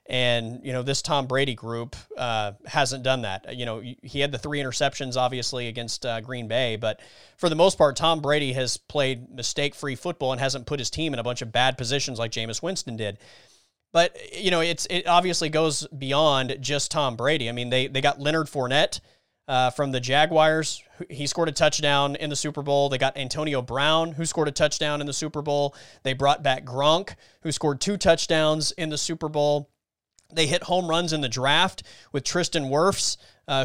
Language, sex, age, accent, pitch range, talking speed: English, male, 30-49, American, 125-155 Hz, 205 wpm